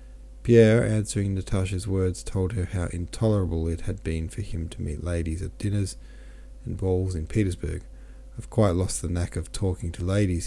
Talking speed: 180 wpm